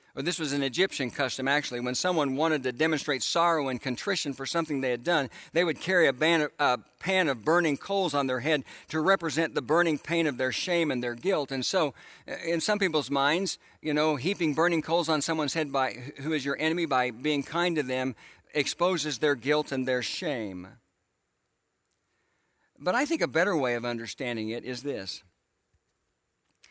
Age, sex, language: 60-79, male, English